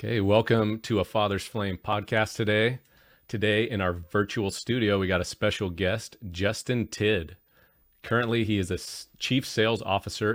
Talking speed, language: 155 wpm, English